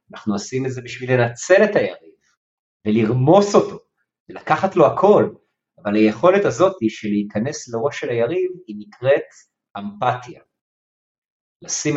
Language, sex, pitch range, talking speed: Hebrew, male, 110-155 Hz, 125 wpm